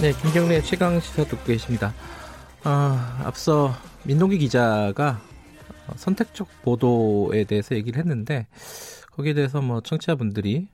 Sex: male